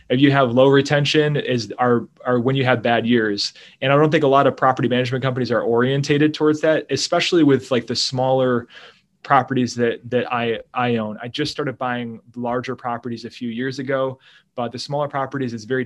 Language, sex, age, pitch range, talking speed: English, male, 20-39, 120-140 Hz, 205 wpm